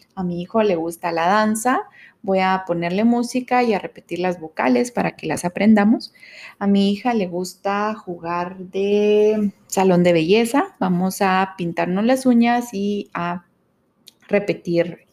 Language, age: Spanish, 30-49